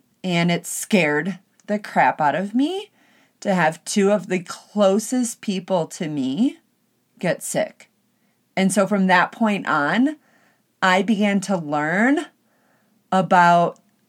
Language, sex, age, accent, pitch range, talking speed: English, female, 30-49, American, 175-225 Hz, 130 wpm